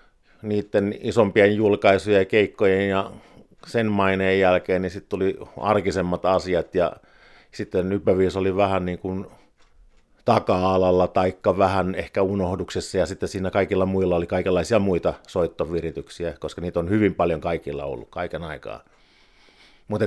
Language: Finnish